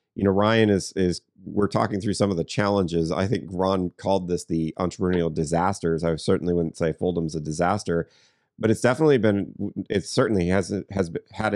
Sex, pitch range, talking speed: male, 85-105 Hz, 185 wpm